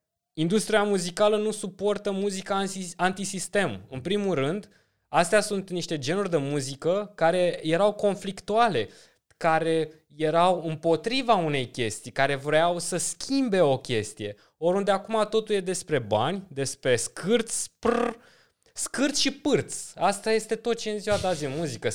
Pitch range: 150-200 Hz